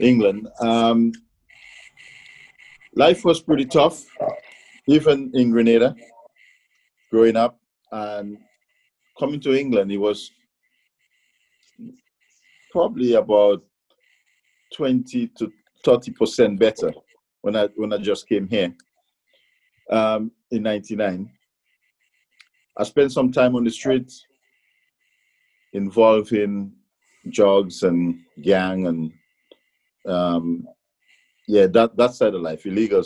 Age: 50-69